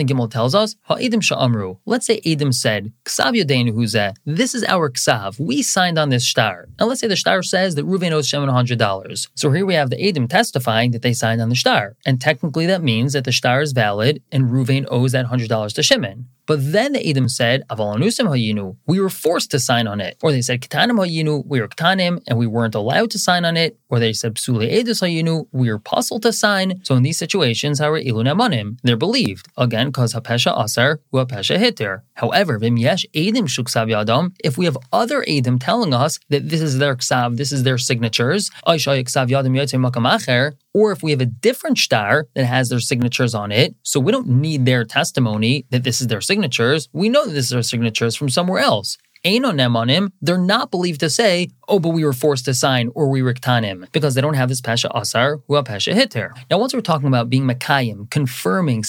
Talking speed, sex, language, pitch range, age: 215 wpm, male, English, 120-170 Hz, 20-39